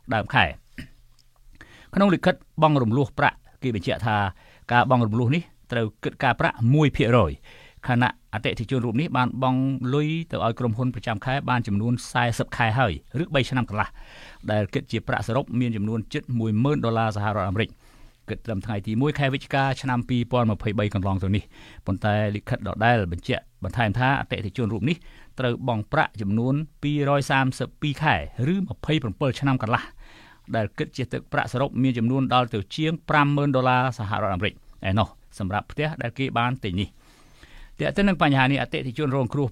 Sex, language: male, English